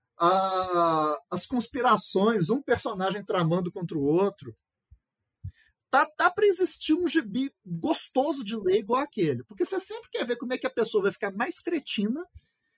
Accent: Brazilian